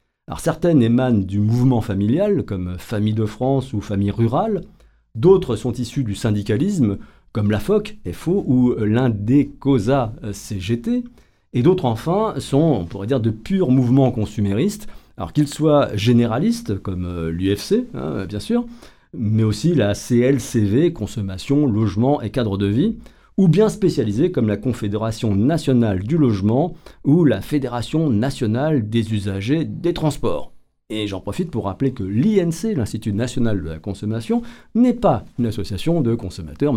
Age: 50-69